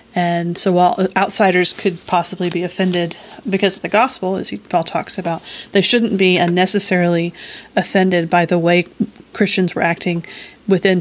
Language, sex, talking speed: English, female, 155 wpm